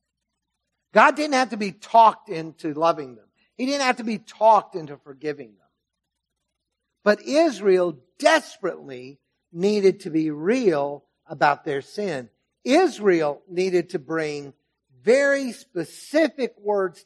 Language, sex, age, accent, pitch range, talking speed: English, male, 50-69, American, 140-210 Hz, 125 wpm